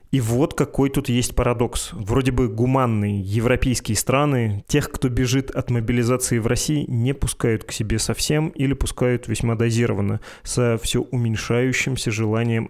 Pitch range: 110-130 Hz